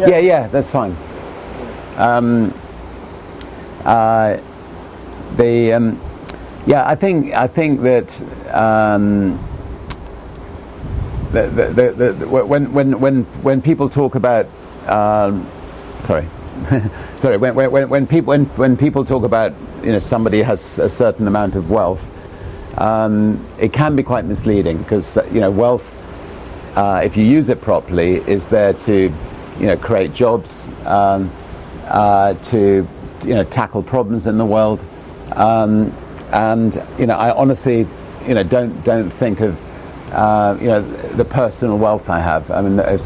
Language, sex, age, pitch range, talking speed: Russian, male, 50-69, 95-120 Hz, 140 wpm